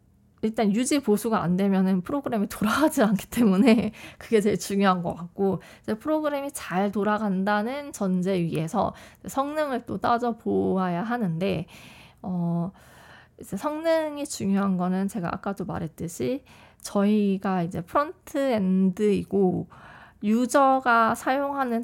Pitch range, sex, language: 185-240 Hz, female, Korean